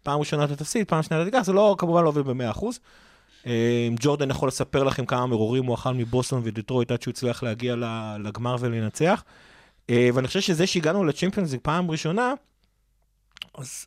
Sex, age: male, 30-49